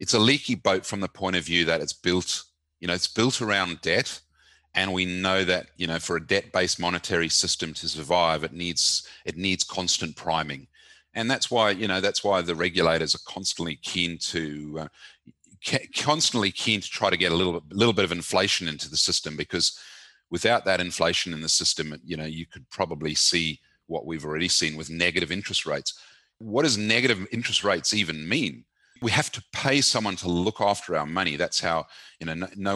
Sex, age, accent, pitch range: male, 30-49, Australian, 85-105 Hz